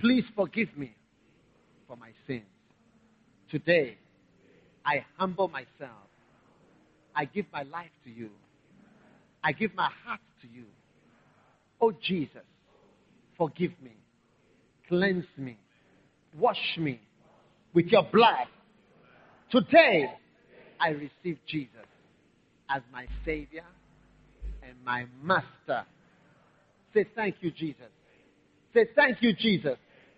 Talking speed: 100 wpm